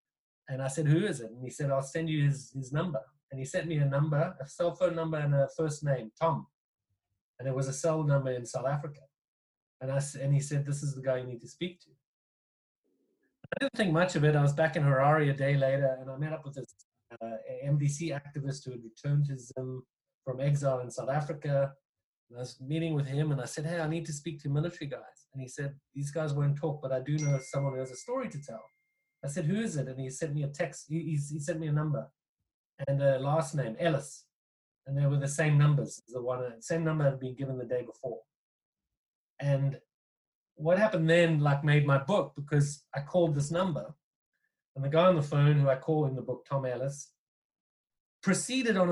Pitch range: 135-160 Hz